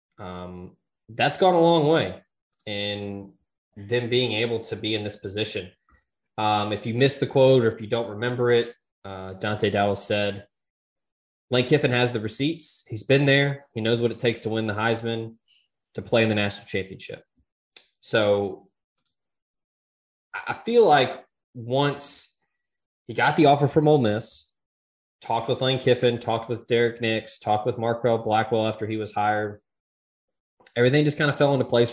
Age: 20-39